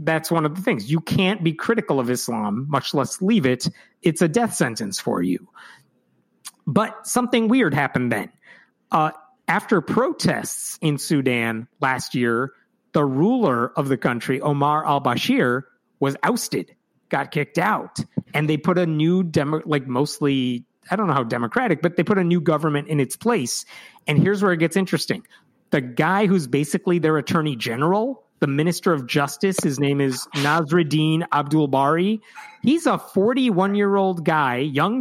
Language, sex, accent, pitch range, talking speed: English, male, American, 145-190 Hz, 160 wpm